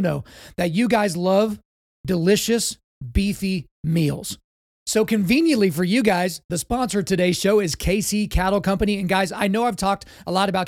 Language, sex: English, male